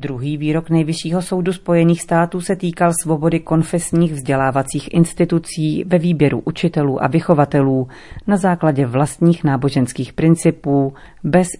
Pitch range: 140-170 Hz